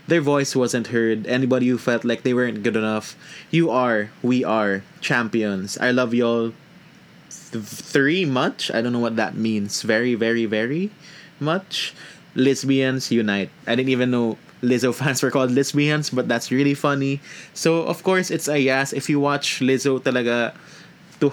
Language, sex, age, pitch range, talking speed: English, male, 20-39, 115-135 Hz, 165 wpm